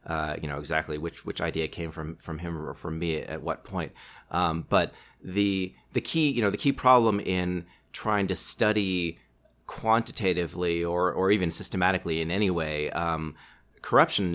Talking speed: 170 wpm